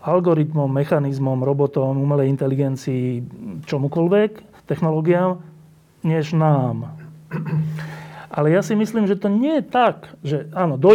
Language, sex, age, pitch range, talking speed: Slovak, male, 40-59, 135-165 Hz, 115 wpm